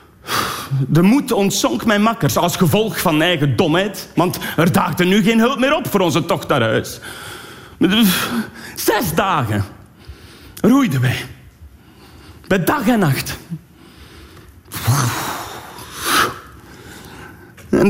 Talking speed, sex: 105 wpm, male